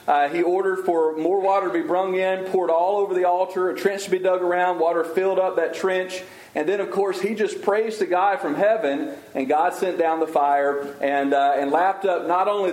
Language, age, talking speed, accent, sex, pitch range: English, 40-59, 235 wpm, American, male, 160-205 Hz